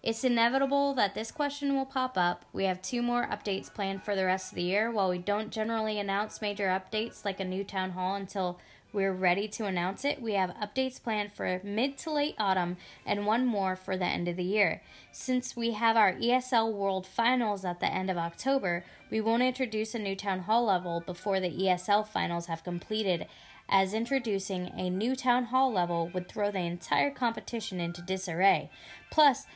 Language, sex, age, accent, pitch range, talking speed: English, female, 10-29, American, 185-235 Hz, 195 wpm